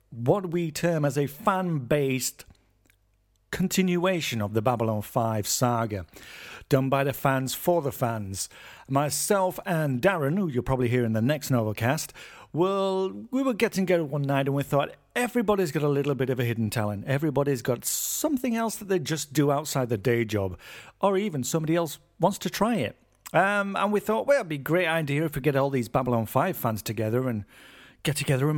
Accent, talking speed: British, 195 wpm